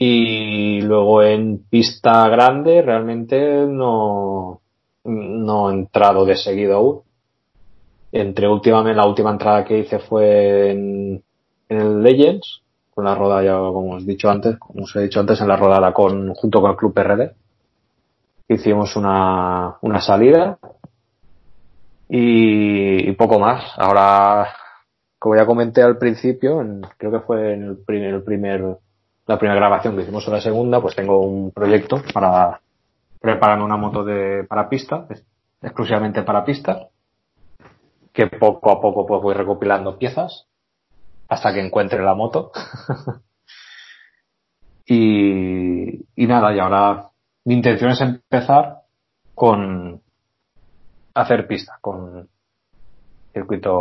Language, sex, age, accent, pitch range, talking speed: Spanish, male, 20-39, Spanish, 100-115 Hz, 135 wpm